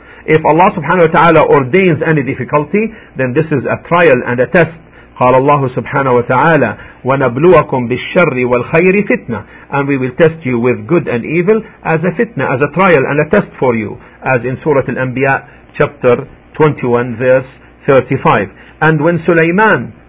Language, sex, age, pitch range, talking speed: English, male, 50-69, 125-160 Hz, 170 wpm